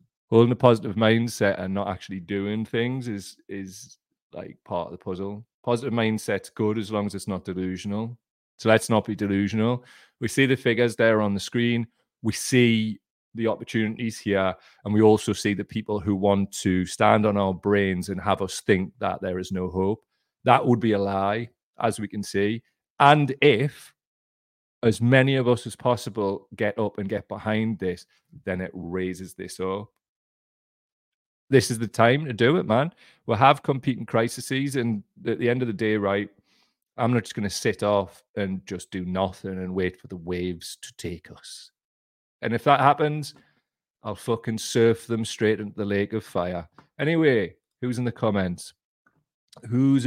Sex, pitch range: male, 100-120 Hz